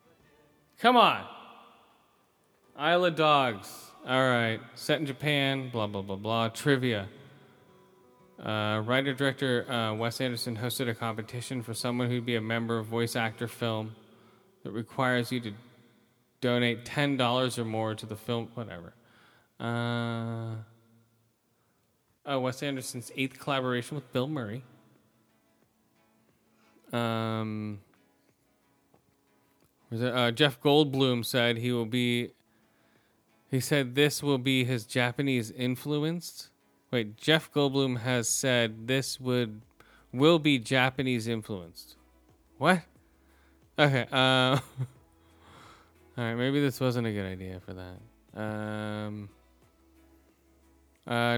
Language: English